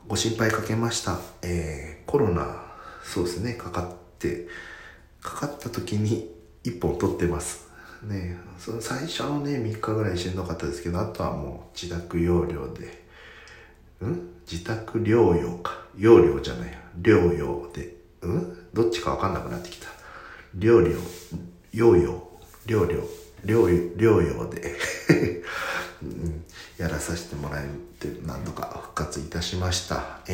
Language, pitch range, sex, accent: Japanese, 85-90 Hz, male, native